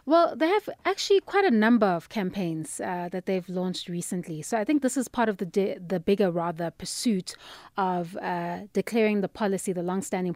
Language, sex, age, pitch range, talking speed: English, female, 30-49, 175-215 Hz, 195 wpm